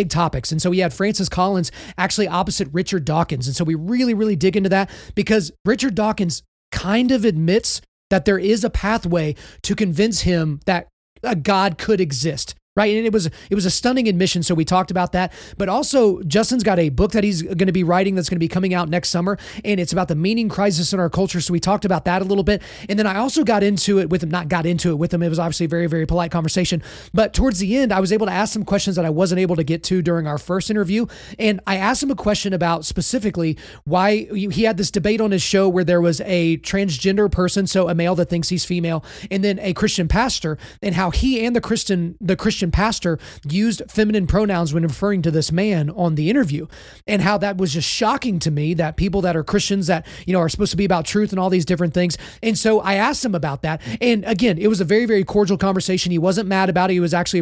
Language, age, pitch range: English, 30-49, 170-205 Hz